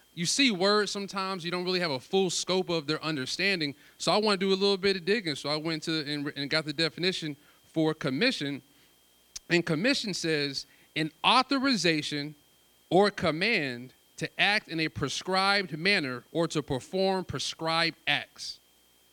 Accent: American